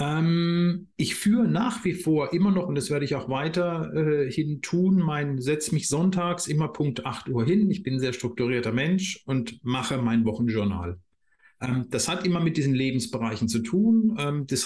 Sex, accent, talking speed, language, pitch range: male, German, 165 wpm, German, 125-170 Hz